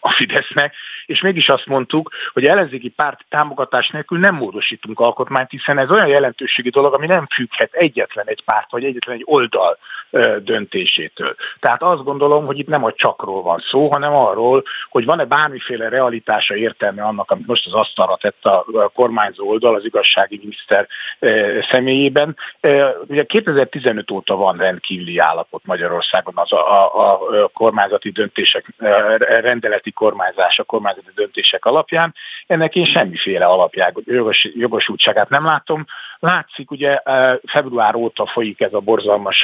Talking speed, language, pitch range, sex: 140 wpm, Hungarian, 115-155 Hz, male